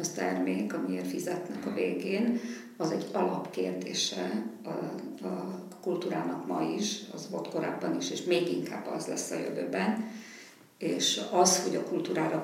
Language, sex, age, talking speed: Hungarian, female, 50-69, 145 wpm